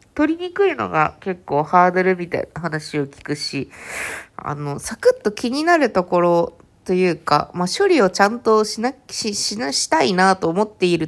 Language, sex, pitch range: Japanese, female, 150-225 Hz